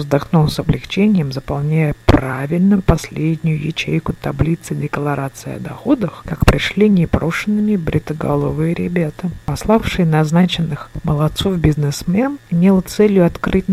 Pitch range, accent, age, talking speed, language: 145-185 Hz, native, 50-69, 100 wpm, Russian